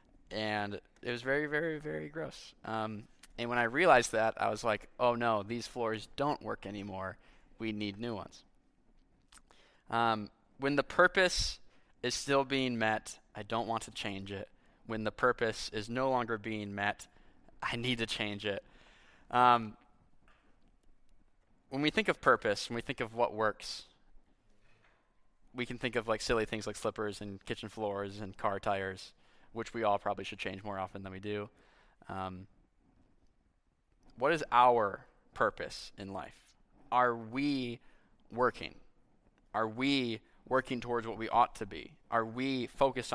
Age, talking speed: 20-39, 160 wpm